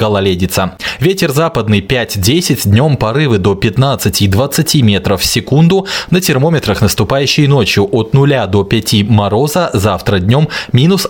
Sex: male